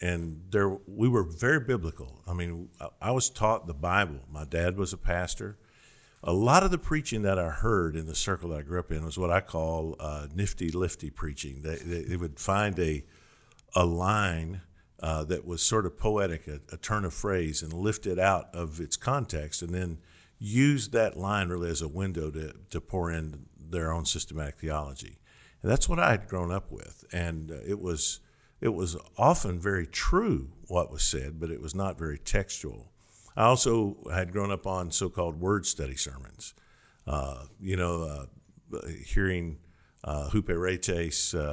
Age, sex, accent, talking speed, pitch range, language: 50-69, male, American, 180 wpm, 80-100 Hz, English